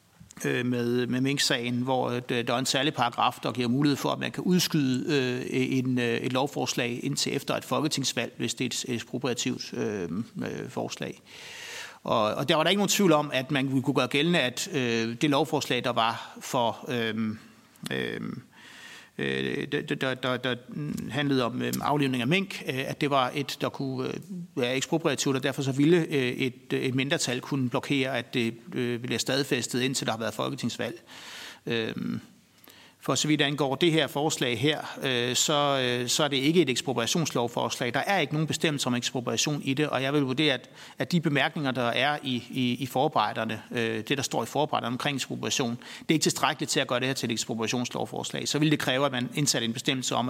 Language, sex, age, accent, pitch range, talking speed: Danish, male, 60-79, native, 120-145 Hz, 185 wpm